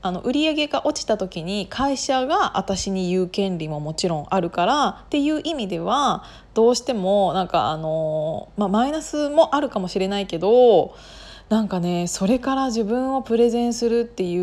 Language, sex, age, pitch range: Japanese, female, 20-39, 180-245 Hz